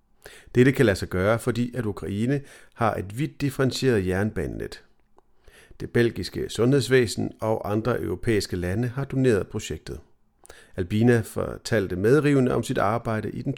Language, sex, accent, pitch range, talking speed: Danish, male, native, 95-125 Hz, 135 wpm